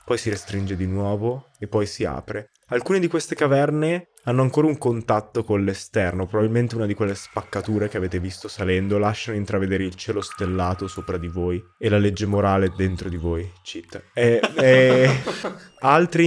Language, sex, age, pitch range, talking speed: Italian, male, 20-39, 95-115 Hz, 160 wpm